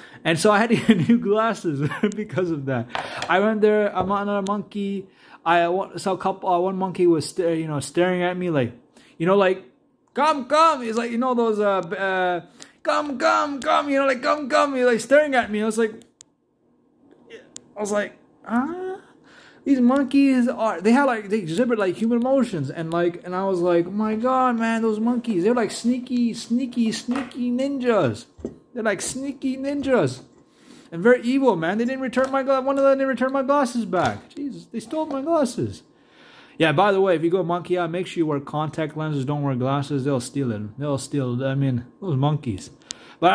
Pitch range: 150-245 Hz